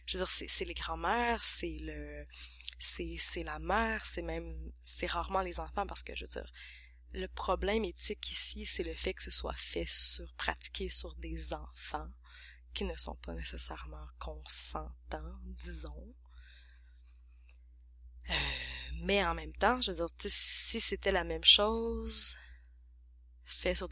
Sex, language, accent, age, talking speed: female, French, Canadian, 20-39, 160 wpm